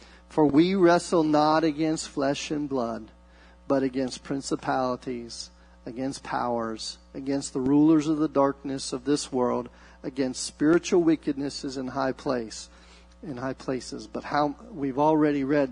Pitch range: 120-150 Hz